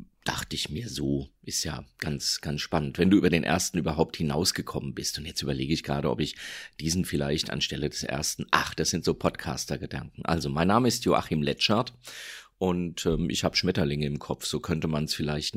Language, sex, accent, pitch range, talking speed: German, male, German, 80-95 Hz, 200 wpm